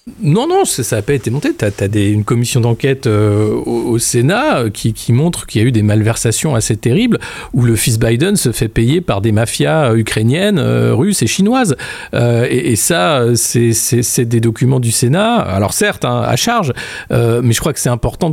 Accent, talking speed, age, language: French, 215 wpm, 50-69, French